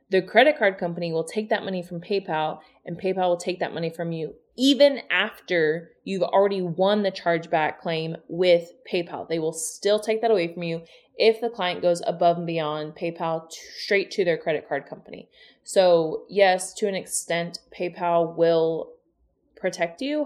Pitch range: 165-205 Hz